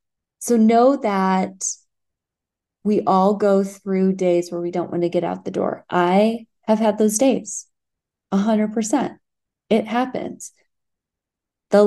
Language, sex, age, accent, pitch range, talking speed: English, female, 20-39, American, 175-220 Hz, 130 wpm